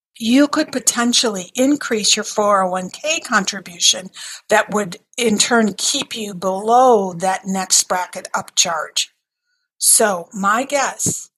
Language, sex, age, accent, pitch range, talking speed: English, female, 60-79, American, 195-255 Hz, 110 wpm